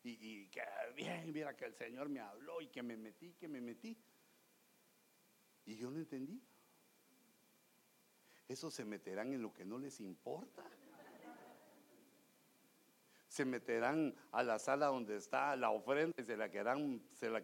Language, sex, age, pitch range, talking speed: English, male, 60-79, 180-265 Hz, 155 wpm